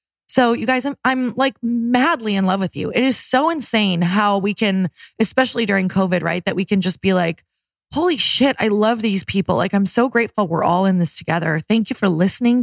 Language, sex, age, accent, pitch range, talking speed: English, female, 20-39, American, 170-215 Hz, 220 wpm